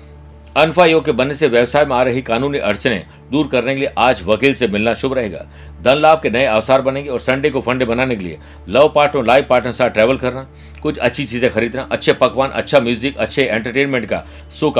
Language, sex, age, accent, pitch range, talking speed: Hindi, male, 60-79, native, 90-140 Hz, 220 wpm